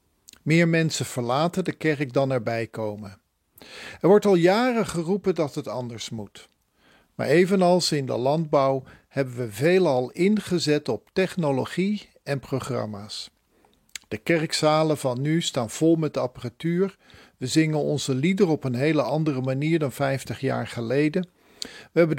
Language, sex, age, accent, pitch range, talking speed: Dutch, male, 50-69, Dutch, 130-185 Hz, 145 wpm